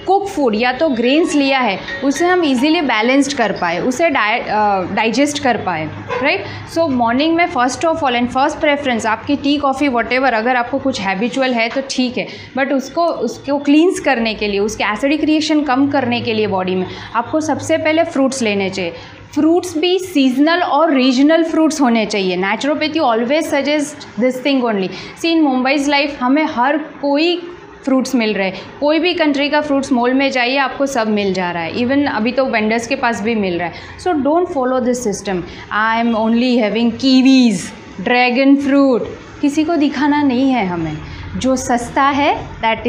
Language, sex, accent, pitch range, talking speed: English, female, Indian, 225-285 Hz, 155 wpm